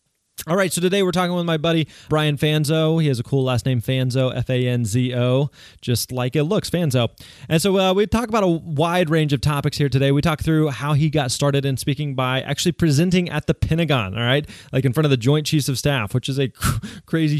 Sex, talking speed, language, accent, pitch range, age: male, 250 wpm, English, American, 130-160 Hz, 20-39